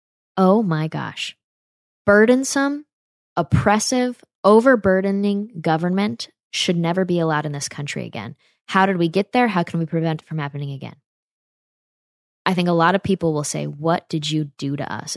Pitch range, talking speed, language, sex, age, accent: 155-190 Hz, 165 wpm, English, female, 10-29, American